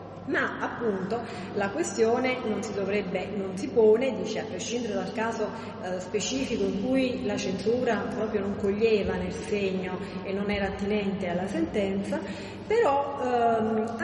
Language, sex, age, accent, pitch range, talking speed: Italian, female, 40-59, native, 190-235 Hz, 145 wpm